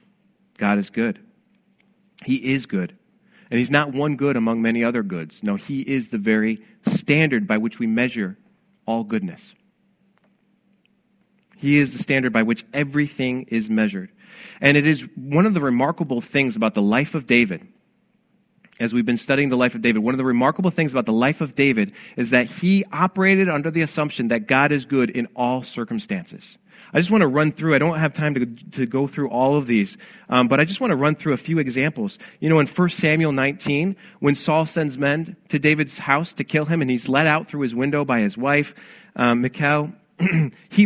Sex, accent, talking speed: male, American, 205 wpm